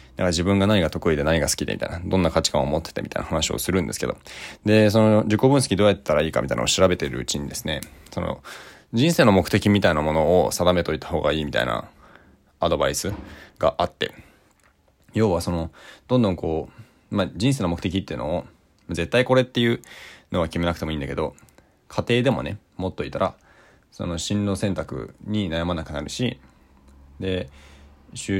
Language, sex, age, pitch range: Japanese, male, 20-39, 80-100 Hz